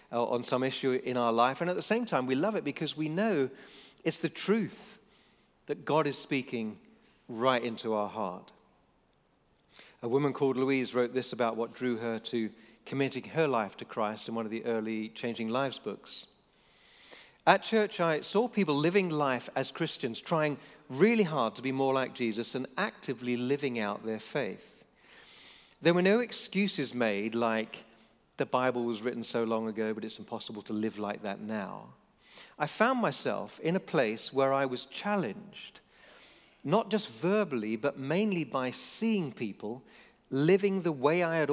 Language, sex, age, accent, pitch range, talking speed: English, male, 40-59, British, 120-160 Hz, 170 wpm